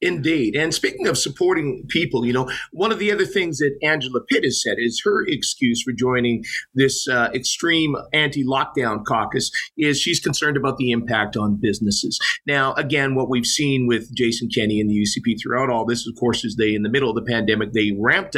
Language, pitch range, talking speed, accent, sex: English, 120-145 Hz, 200 wpm, American, male